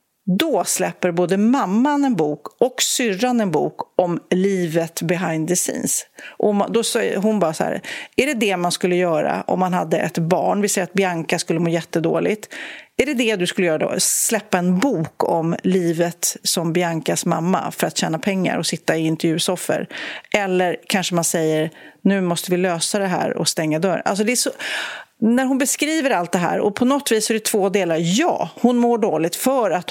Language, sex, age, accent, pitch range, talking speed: Swedish, female, 40-59, native, 175-220 Hz, 200 wpm